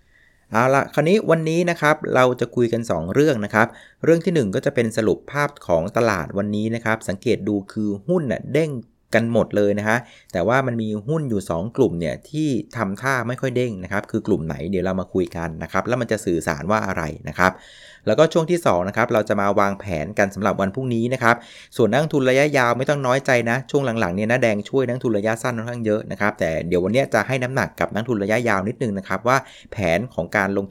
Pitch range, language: 100-135 Hz, Thai